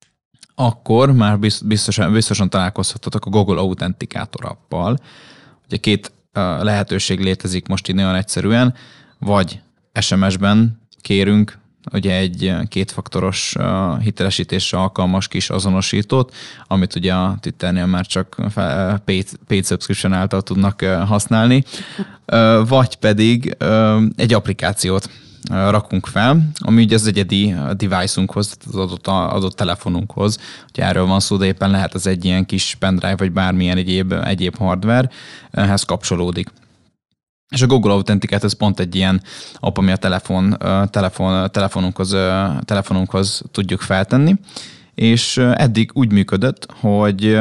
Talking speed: 120 wpm